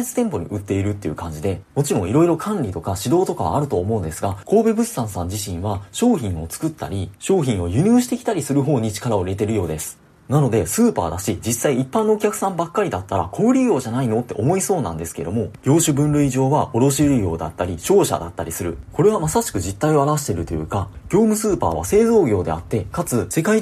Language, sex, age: Japanese, male, 30-49